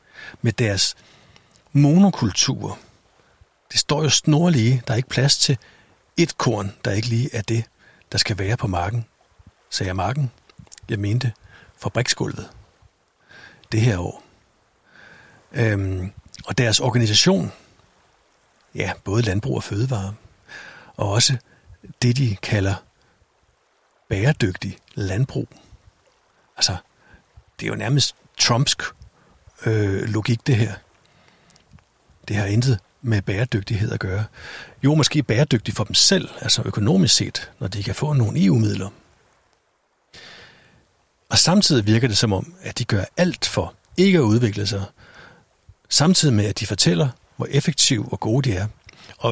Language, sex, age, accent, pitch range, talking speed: Danish, male, 60-79, native, 100-135 Hz, 130 wpm